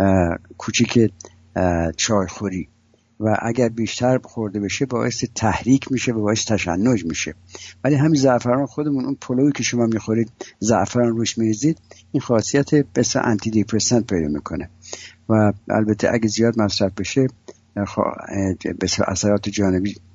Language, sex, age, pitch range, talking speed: English, male, 60-79, 95-120 Hz, 125 wpm